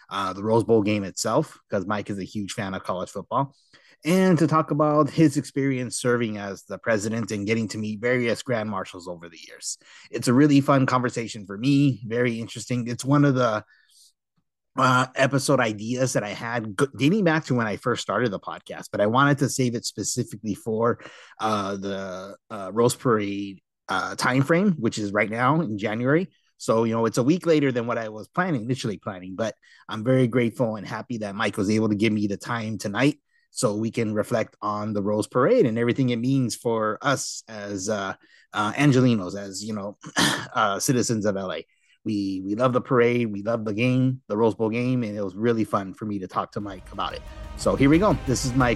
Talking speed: 210 wpm